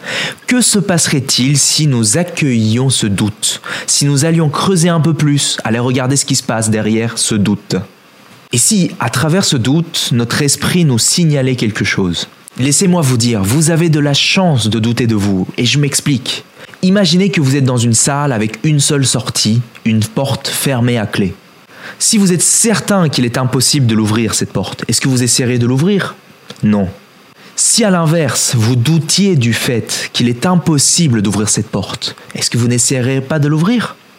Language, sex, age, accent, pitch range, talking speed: French, male, 20-39, French, 120-165 Hz, 185 wpm